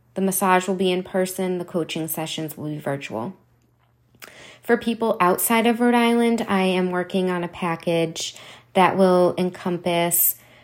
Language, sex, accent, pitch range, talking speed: English, female, American, 155-185 Hz, 150 wpm